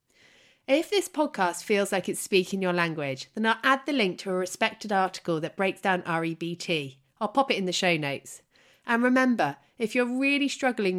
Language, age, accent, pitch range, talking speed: English, 30-49, British, 170-230 Hz, 190 wpm